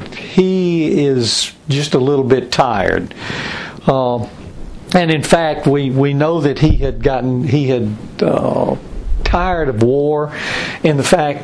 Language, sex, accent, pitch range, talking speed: English, male, American, 125-165 Hz, 140 wpm